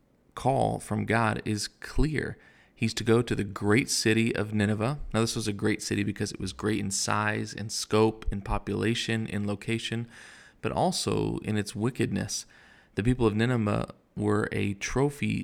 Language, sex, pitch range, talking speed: English, male, 105-120 Hz, 170 wpm